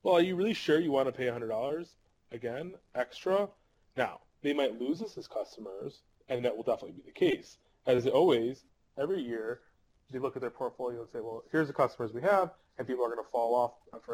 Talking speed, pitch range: 215 wpm, 120-160 Hz